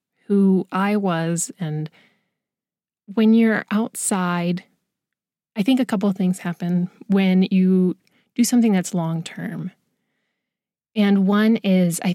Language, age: English, 20-39